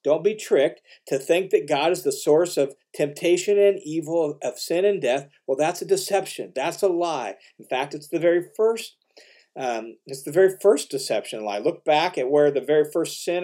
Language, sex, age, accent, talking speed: English, male, 40-59, American, 205 wpm